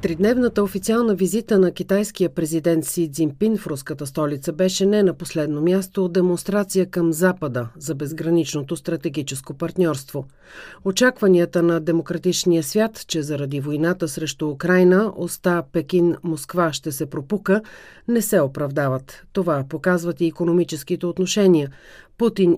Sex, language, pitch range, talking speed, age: female, Bulgarian, 160-200 Hz, 125 wpm, 40-59